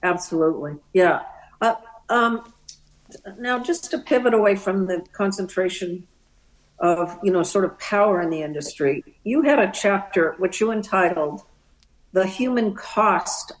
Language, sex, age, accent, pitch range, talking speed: English, female, 60-79, American, 165-200 Hz, 135 wpm